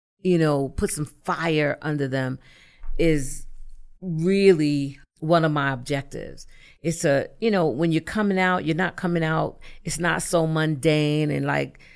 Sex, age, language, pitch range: female, 40-59, English, 140-170 Hz